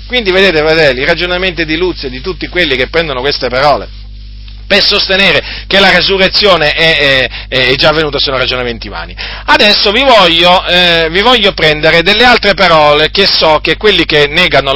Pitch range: 125-195 Hz